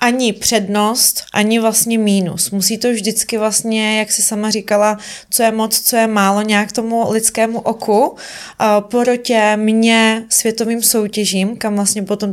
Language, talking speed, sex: Czech, 145 wpm, female